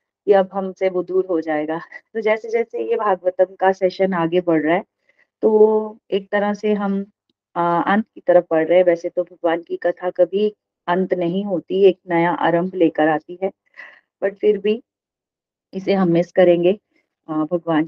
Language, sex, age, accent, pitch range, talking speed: Hindi, female, 30-49, native, 165-205 Hz, 165 wpm